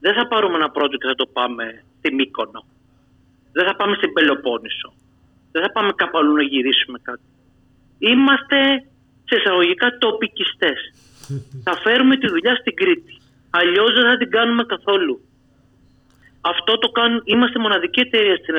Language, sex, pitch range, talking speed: Greek, male, 170-245 Hz, 150 wpm